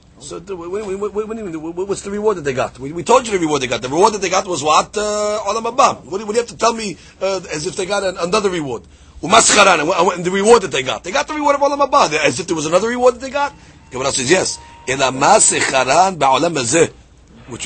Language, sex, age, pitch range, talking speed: English, male, 40-59, 160-230 Hz, 260 wpm